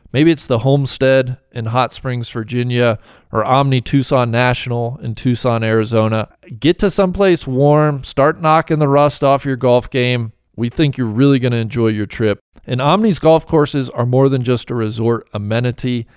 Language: English